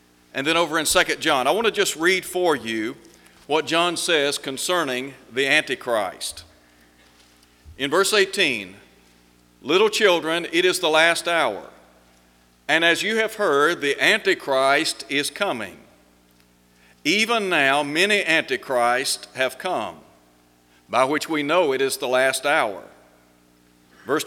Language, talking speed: English, 135 wpm